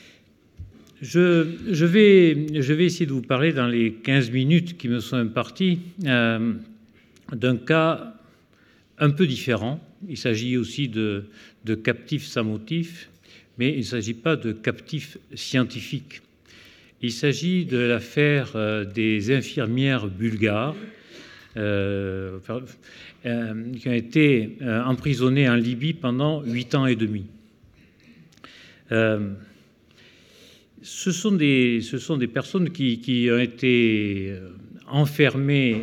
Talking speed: 120 wpm